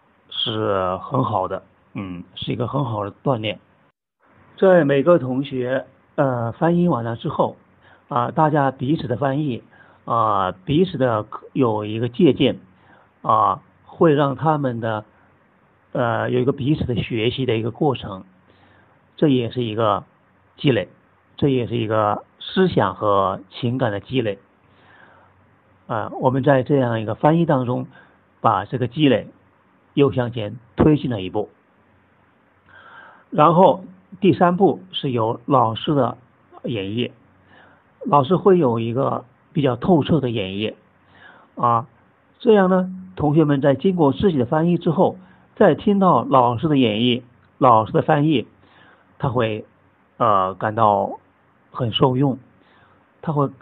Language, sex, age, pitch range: Chinese, male, 50-69, 110-150 Hz